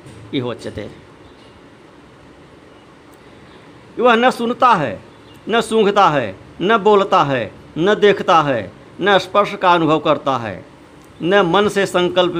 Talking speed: 115 wpm